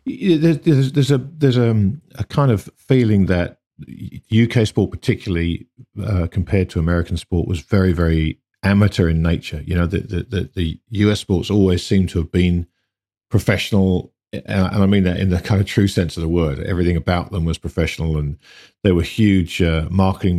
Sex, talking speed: male, 185 wpm